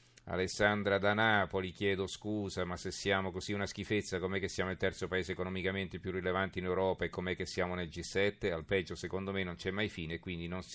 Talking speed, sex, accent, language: 205 wpm, male, native, Italian